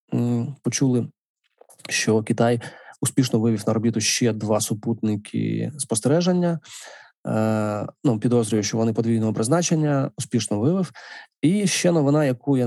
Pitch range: 115-135 Hz